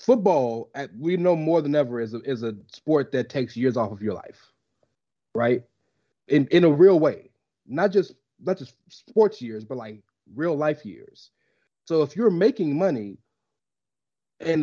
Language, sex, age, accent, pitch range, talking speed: English, male, 30-49, American, 125-190 Hz, 170 wpm